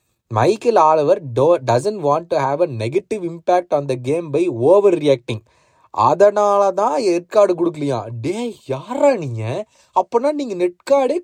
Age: 20-39